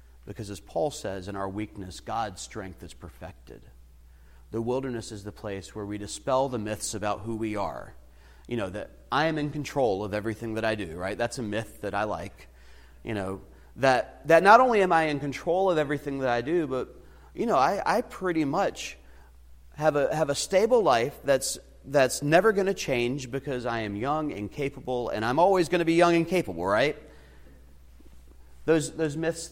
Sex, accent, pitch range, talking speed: male, American, 100-140 Hz, 195 wpm